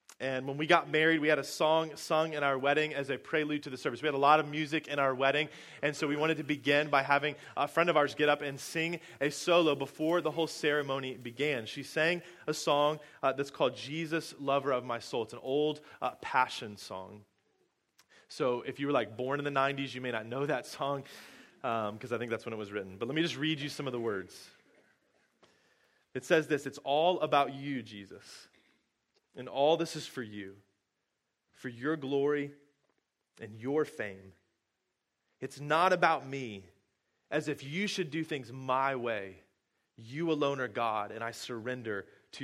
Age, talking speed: 20-39, 200 wpm